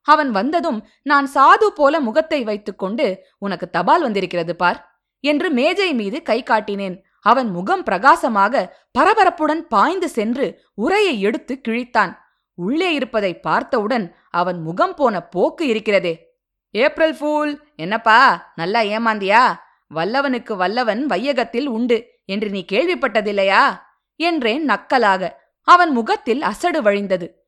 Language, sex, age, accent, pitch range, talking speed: Tamil, female, 20-39, native, 210-315 Hz, 110 wpm